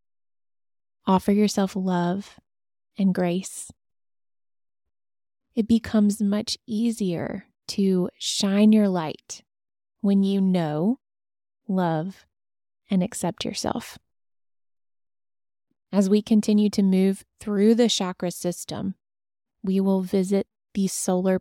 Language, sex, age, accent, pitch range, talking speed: English, female, 20-39, American, 140-205 Hz, 95 wpm